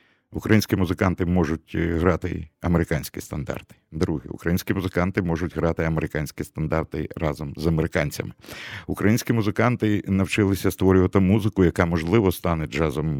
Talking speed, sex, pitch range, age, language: 115 wpm, male, 80-105 Hz, 50-69, Russian